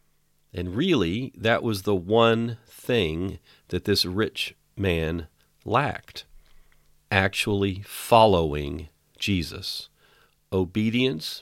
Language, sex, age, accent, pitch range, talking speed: English, male, 50-69, American, 80-110 Hz, 85 wpm